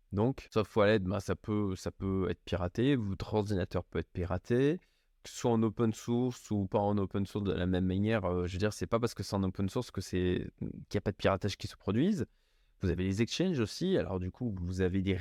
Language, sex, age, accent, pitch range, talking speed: French, male, 20-39, French, 100-140 Hz, 255 wpm